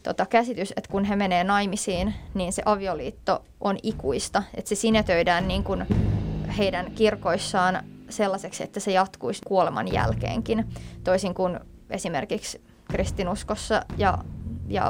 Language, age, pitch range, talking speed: Finnish, 20-39, 180-210 Hz, 120 wpm